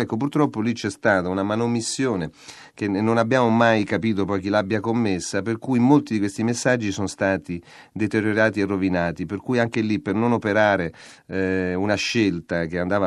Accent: native